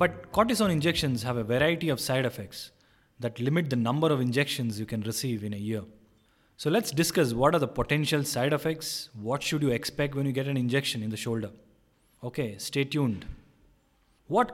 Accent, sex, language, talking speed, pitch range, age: Indian, male, English, 190 wpm, 120-155 Hz, 20-39